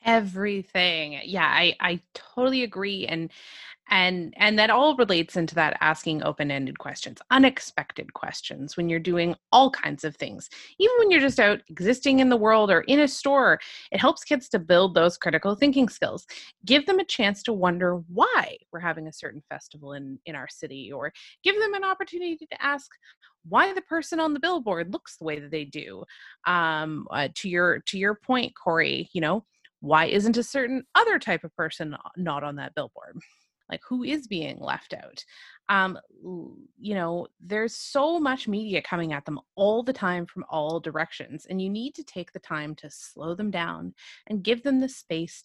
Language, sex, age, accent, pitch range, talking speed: English, female, 20-39, American, 165-255 Hz, 190 wpm